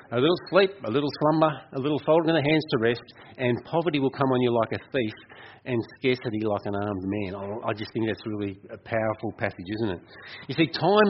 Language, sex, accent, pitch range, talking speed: English, male, Australian, 115-145 Hz, 230 wpm